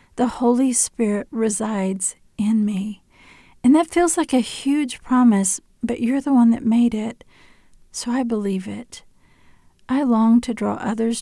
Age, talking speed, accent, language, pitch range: 40-59, 155 wpm, American, English, 205-240 Hz